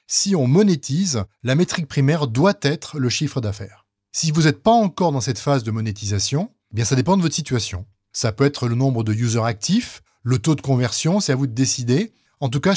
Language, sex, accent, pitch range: French, male, French, 125-185 Hz